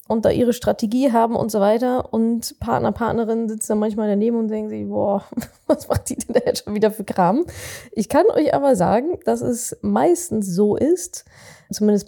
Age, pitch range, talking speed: 20-39, 200-260 Hz, 200 wpm